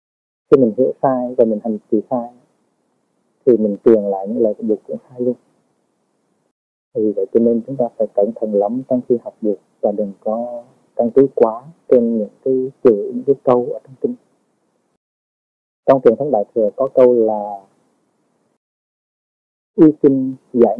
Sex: male